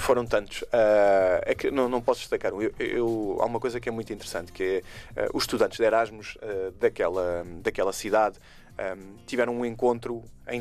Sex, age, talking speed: male, 20-39, 200 wpm